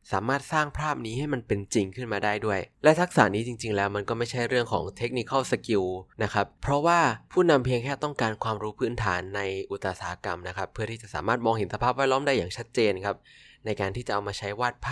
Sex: male